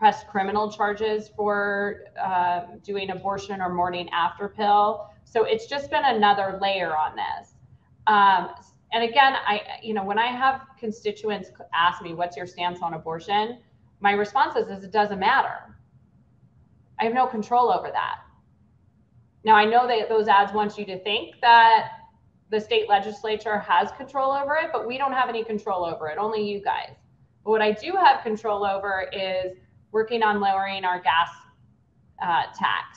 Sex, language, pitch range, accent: female, English, 195-230 Hz, American